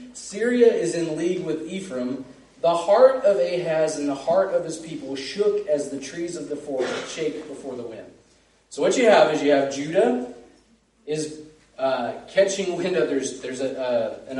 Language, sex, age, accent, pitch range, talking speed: English, male, 30-49, American, 140-200 Hz, 190 wpm